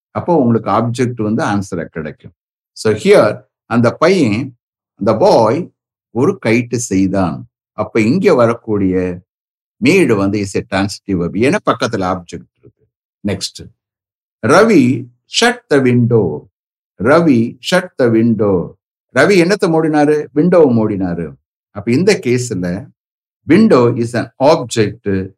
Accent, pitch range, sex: Indian, 100-140 Hz, male